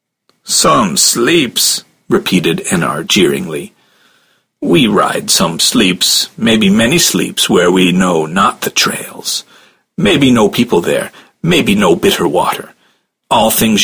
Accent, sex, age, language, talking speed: American, male, 50-69, English, 120 wpm